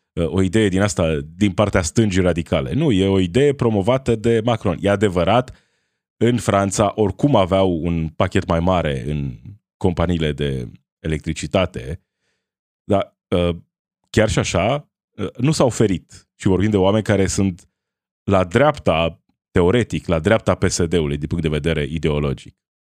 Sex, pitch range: male, 85-120 Hz